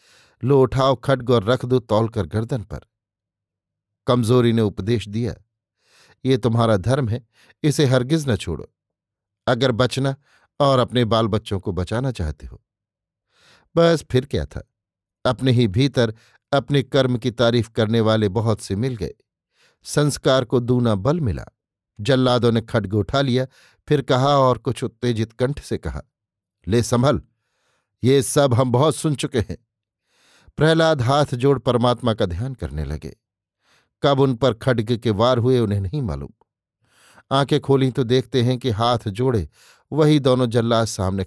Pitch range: 110-130 Hz